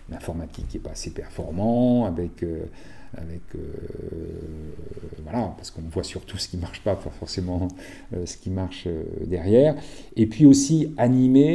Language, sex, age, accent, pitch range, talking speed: French, male, 40-59, French, 85-110 Hz, 160 wpm